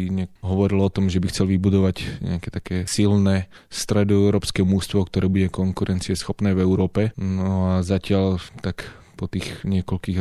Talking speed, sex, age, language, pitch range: 145 wpm, male, 20-39, Slovak, 90-100 Hz